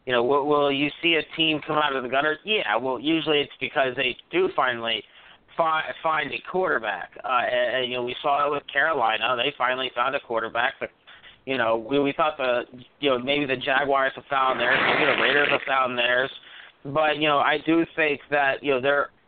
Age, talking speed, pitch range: 30-49, 215 wpm, 135-155 Hz